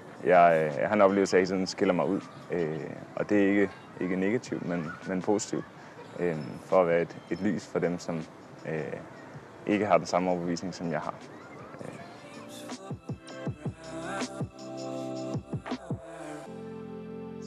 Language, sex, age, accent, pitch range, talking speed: Danish, male, 20-39, native, 90-120 Hz, 135 wpm